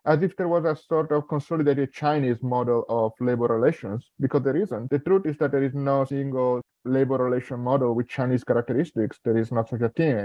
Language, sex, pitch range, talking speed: English, male, 120-150 Hz, 210 wpm